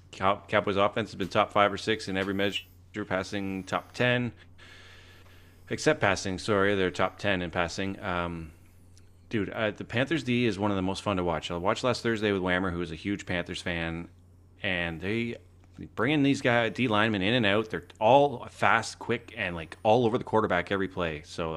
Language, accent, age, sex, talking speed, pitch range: English, American, 30-49, male, 200 wpm, 90-105 Hz